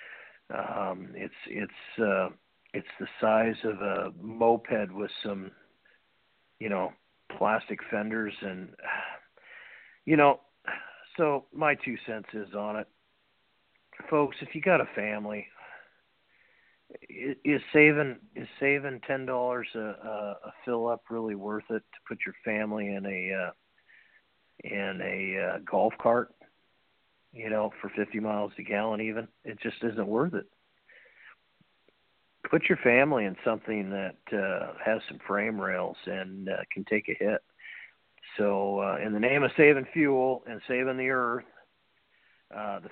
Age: 50-69